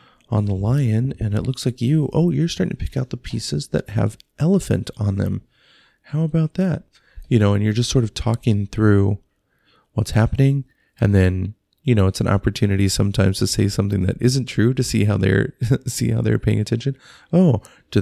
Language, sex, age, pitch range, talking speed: English, male, 30-49, 100-120 Hz, 200 wpm